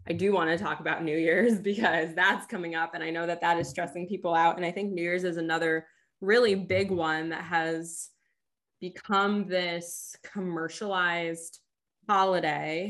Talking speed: 170 wpm